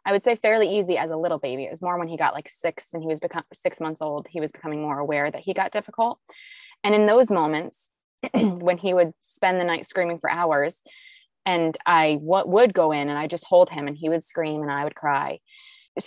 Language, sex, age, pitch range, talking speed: English, female, 20-39, 155-195 Hz, 245 wpm